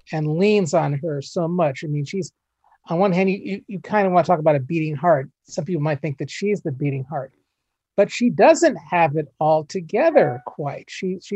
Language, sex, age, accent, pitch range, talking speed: English, male, 40-59, American, 160-220 Hz, 215 wpm